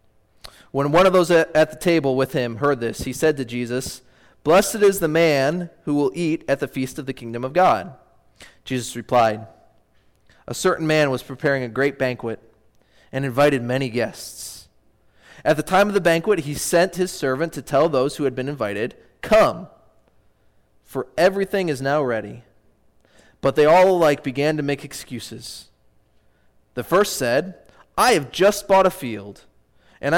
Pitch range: 125-165 Hz